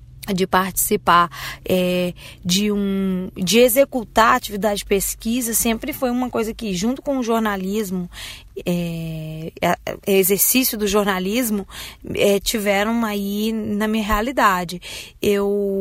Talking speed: 120 wpm